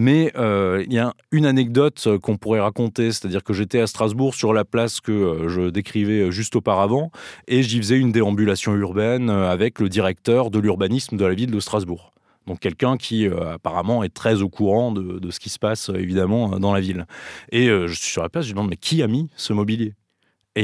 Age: 20-39